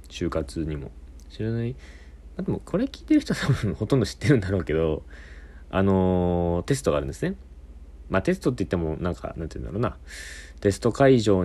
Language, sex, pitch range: Japanese, male, 70-100 Hz